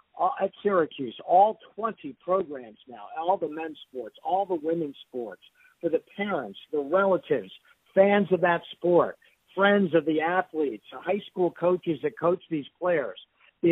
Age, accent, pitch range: 50-69, American, 150-195 Hz